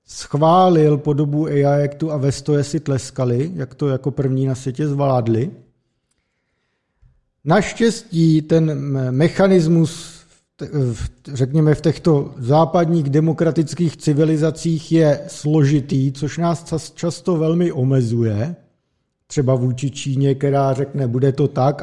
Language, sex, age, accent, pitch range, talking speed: Czech, male, 50-69, native, 135-160 Hz, 105 wpm